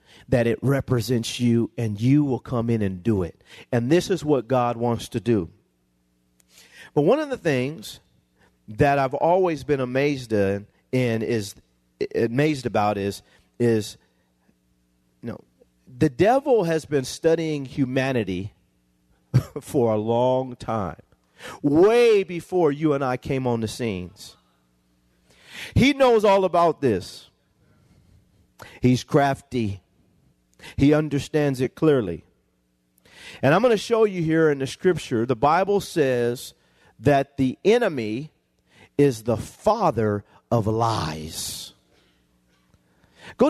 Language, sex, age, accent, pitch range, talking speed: English, male, 40-59, American, 95-155 Hz, 125 wpm